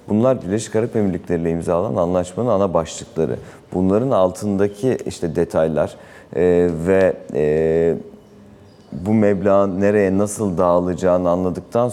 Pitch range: 85-100 Hz